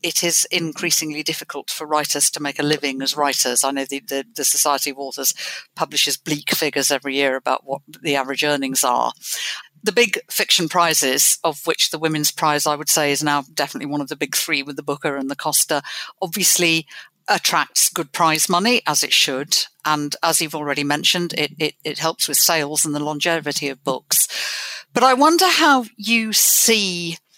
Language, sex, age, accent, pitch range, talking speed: English, female, 50-69, British, 145-170 Hz, 190 wpm